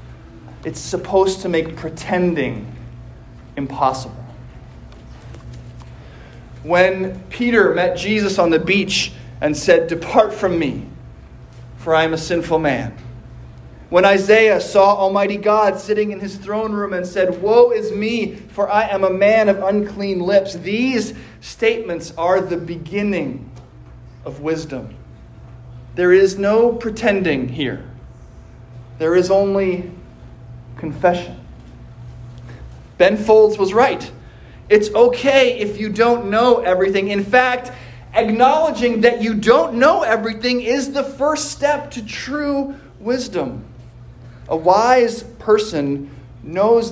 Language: English